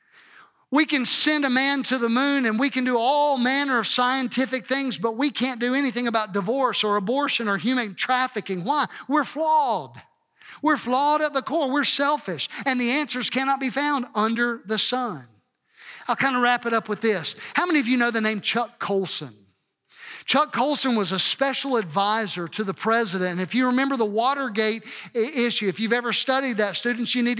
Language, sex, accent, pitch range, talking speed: English, male, American, 205-255 Hz, 195 wpm